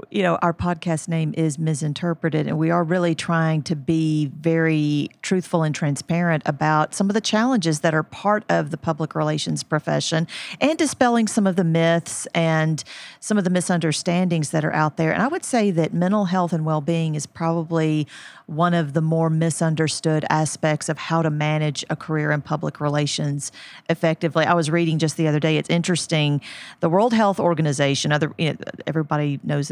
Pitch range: 150-175 Hz